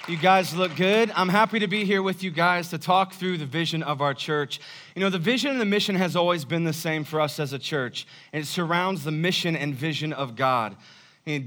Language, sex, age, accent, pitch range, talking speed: English, male, 30-49, American, 140-175 Hz, 245 wpm